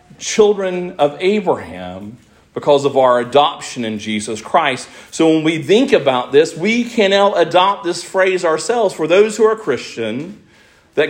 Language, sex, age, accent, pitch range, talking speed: English, male, 40-59, American, 155-215 Hz, 155 wpm